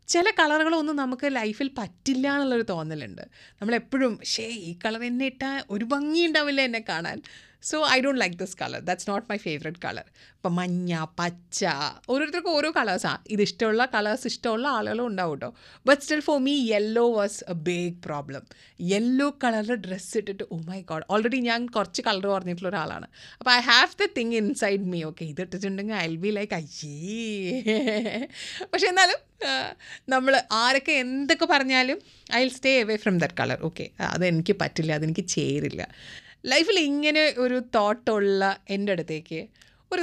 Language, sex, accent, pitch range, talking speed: Malayalam, female, native, 180-245 Hz, 150 wpm